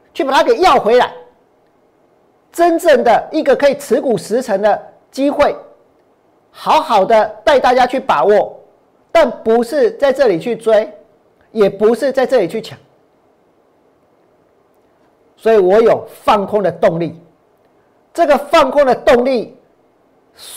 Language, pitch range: Chinese, 200-270 Hz